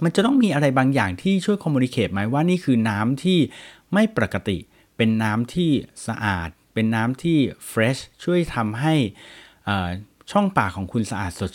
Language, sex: Thai, male